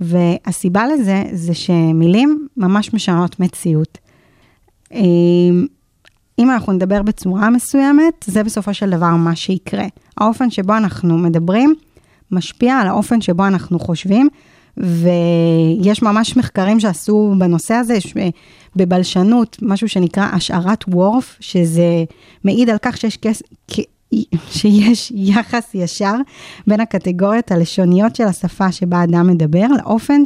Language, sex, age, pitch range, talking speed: Hebrew, female, 30-49, 175-215 Hz, 115 wpm